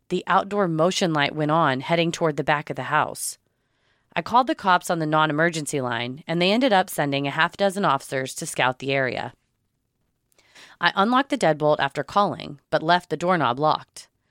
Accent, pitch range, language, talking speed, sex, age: American, 140-195 Hz, English, 190 wpm, female, 30-49